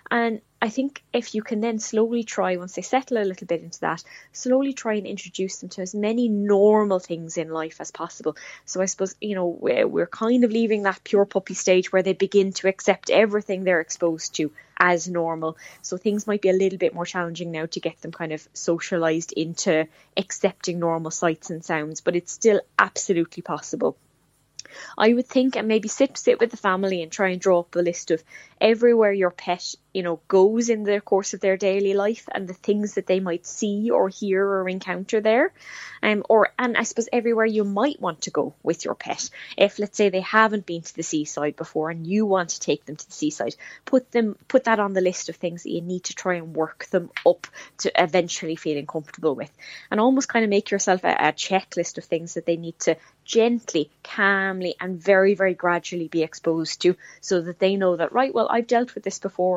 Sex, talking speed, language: female, 220 wpm, English